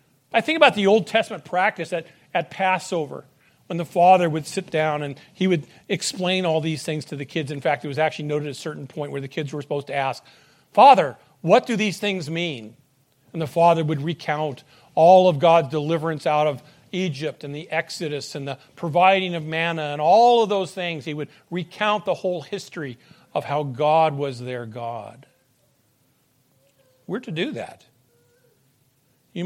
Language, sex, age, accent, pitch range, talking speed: English, male, 50-69, American, 140-185 Hz, 185 wpm